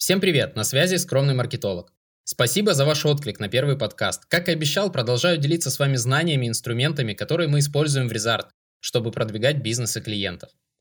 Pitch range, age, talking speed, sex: 120-155 Hz, 20-39, 185 wpm, male